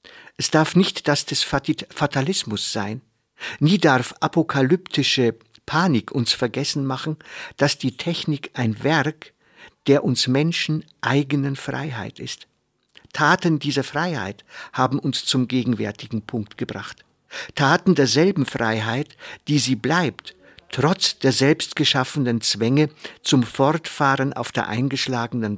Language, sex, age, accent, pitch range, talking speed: German, male, 50-69, German, 125-155 Hz, 115 wpm